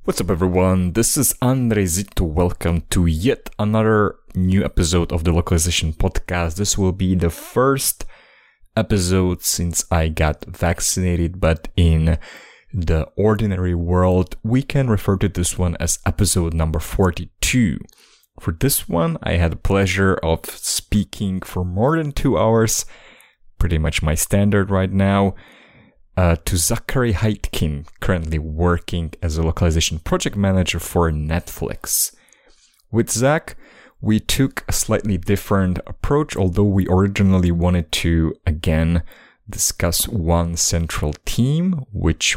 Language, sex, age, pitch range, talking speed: English, male, 30-49, 85-100 Hz, 135 wpm